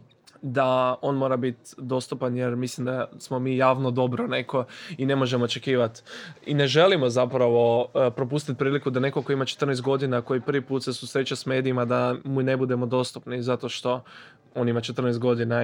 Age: 20-39